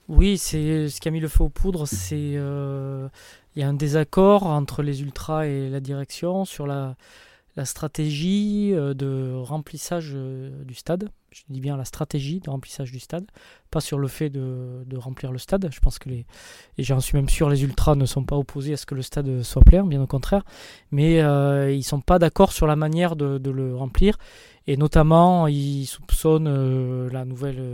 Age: 20-39